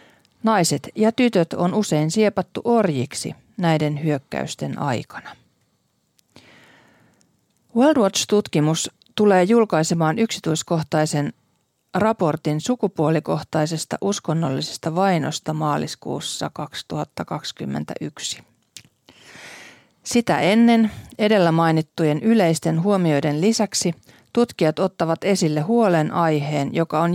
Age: 40-59